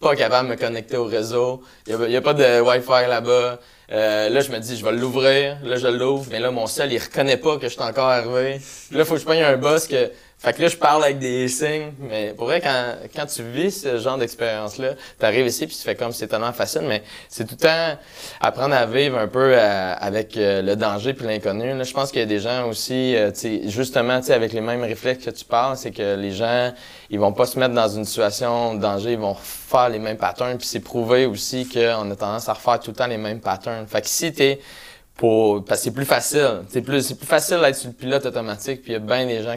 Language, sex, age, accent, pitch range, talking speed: French, male, 20-39, Canadian, 110-135 Hz, 265 wpm